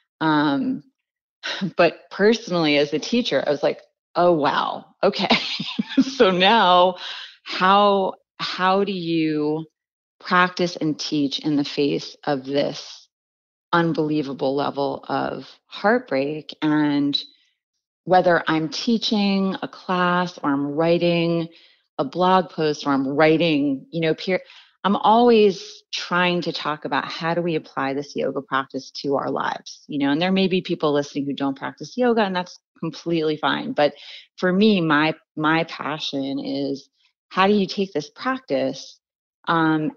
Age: 30-49